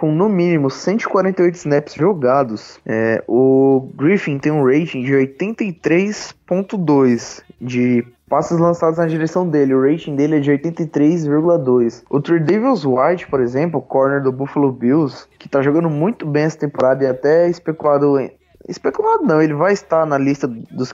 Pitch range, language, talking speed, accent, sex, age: 130-170 Hz, Portuguese, 160 wpm, Brazilian, male, 20-39